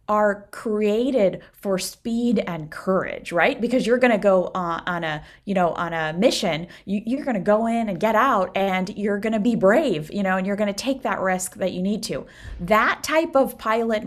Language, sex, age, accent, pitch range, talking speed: English, female, 20-39, American, 175-215 Hz, 200 wpm